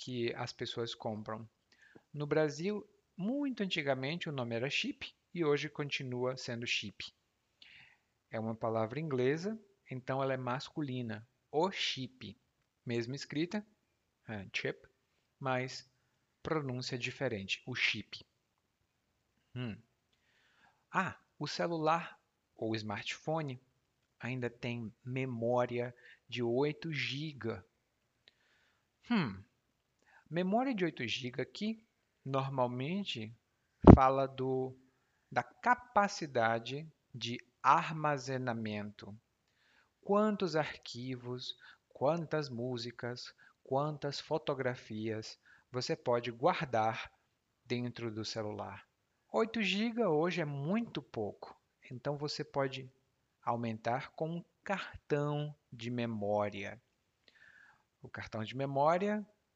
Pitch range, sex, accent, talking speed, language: 115-155 Hz, male, Brazilian, 90 wpm, Portuguese